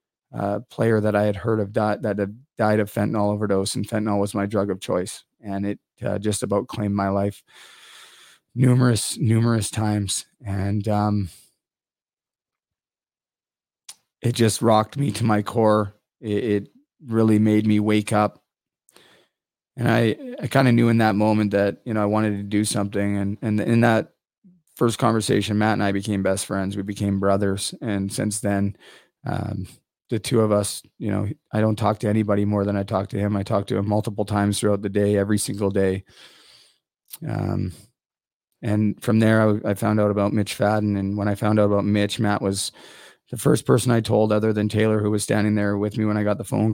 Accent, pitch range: American, 100-110 Hz